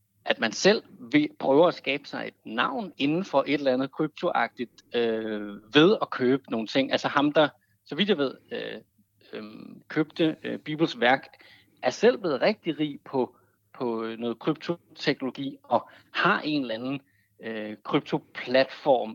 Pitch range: 125-180 Hz